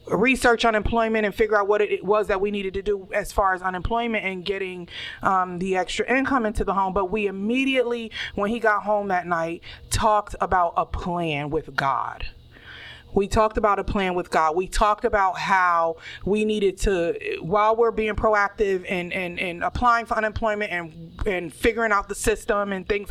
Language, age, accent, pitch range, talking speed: English, 30-49, American, 180-220 Hz, 180 wpm